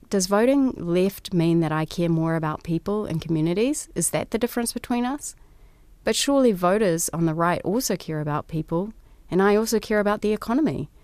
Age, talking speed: 30-49, 190 wpm